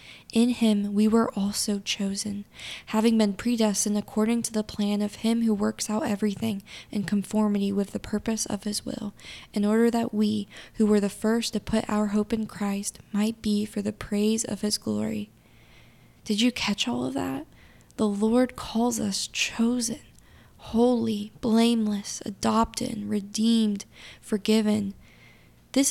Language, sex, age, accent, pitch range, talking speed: English, female, 10-29, American, 205-225 Hz, 155 wpm